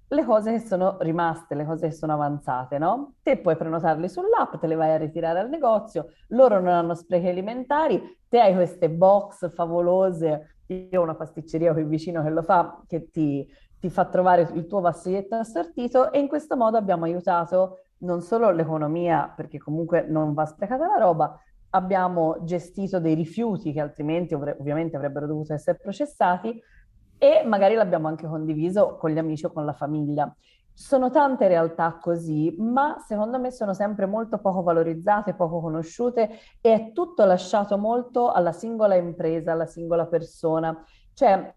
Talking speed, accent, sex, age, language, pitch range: 165 wpm, native, female, 30-49, Italian, 160-210 Hz